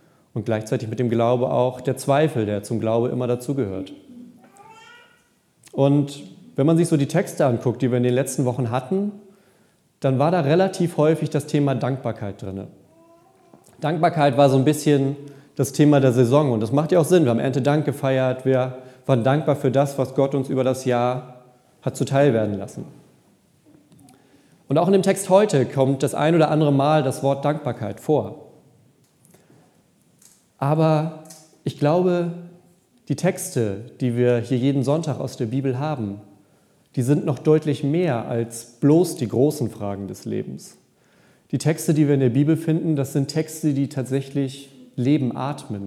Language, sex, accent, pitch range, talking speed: German, male, German, 125-155 Hz, 165 wpm